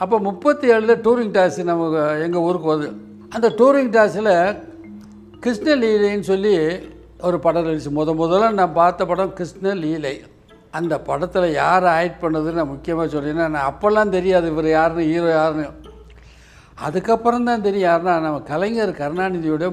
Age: 60-79